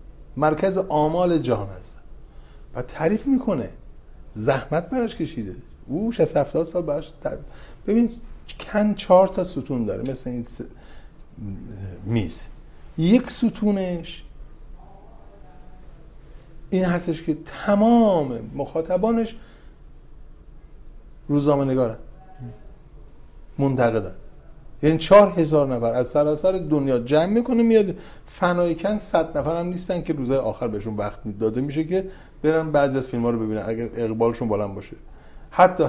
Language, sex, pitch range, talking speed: Persian, male, 120-180 Hz, 115 wpm